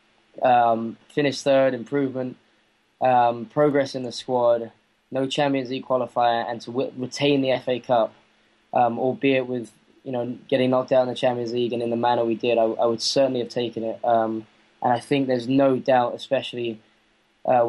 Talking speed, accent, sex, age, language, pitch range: 185 wpm, British, male, 10-29, English, 120-135 Hz